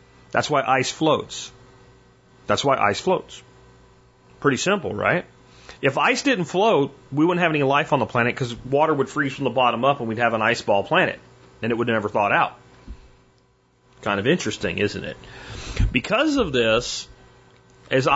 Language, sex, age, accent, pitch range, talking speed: English, male, 30-49, American, 115-135 Hz, 180 wpm